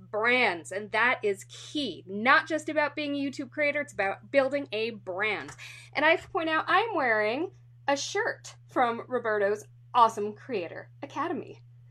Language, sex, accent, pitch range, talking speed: English, female, American, 210-315 Hz, 160 wpm